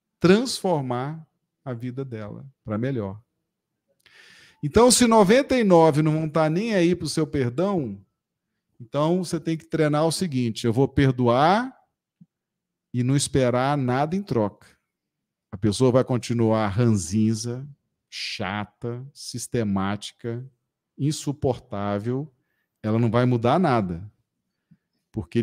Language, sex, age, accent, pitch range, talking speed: Portuguese, male, 40-59, Brazilian, 115-170 Hz, 115 wpm